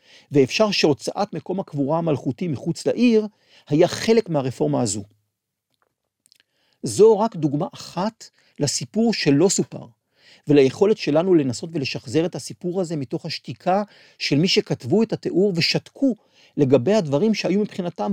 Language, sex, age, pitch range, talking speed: Hebrew, male, 50-69, 135-195 Hz, 125 wpm